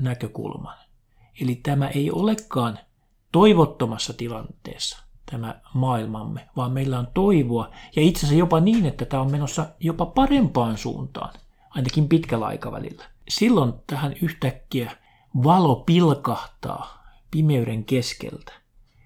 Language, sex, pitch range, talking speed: Finnish, male, 120-155 Hz, 105 wpm